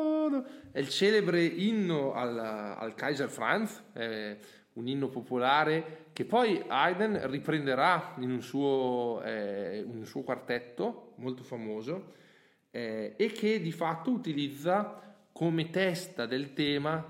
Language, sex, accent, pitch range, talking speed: Italian, male, native, 115-160 Hz, 115 wpm